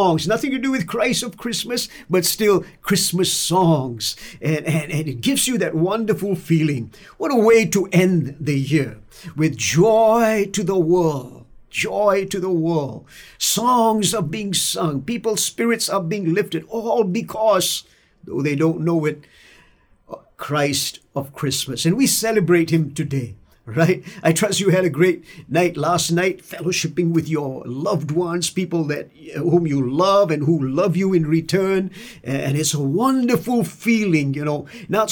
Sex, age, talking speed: male, 50-69, 160 wpm